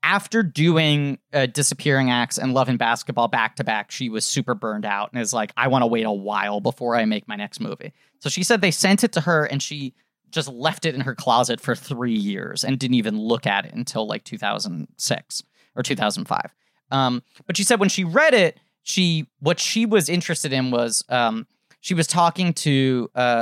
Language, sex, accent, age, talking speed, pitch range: English, male, American, 30-49, 215 wpm, 120-160 Hz